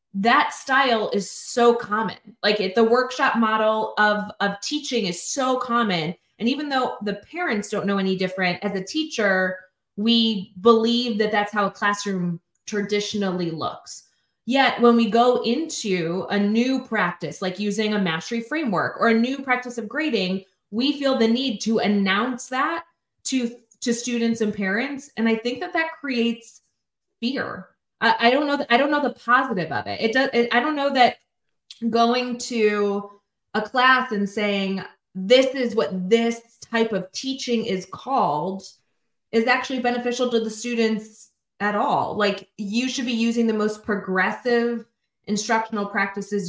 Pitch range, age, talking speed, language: 200-240 Hz, 20-39, 160 wpm, English